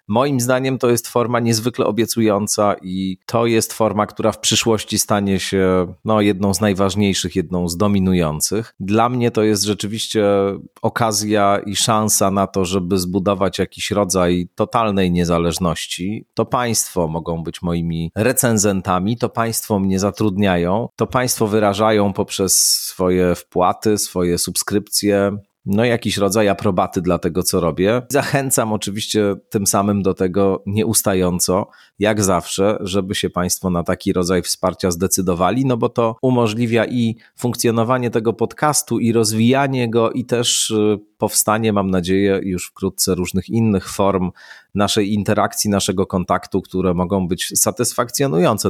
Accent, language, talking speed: native, Polish, 135 wpm